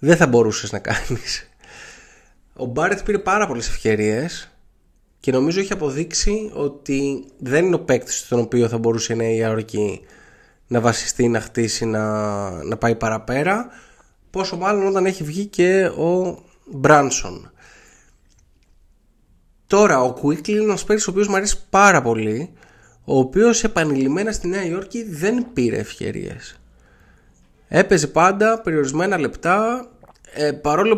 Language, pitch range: Greek, 115-195 Hz